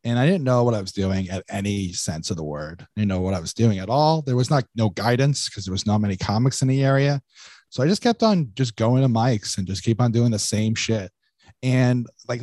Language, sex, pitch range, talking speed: English, male, 100-130 Hz, 270 wpm